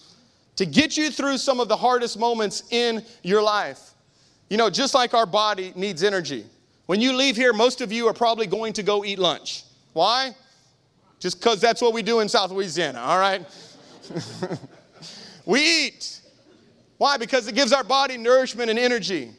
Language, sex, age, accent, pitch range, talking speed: English, male, 30-49, American, 150-235 Hz, 175 wpm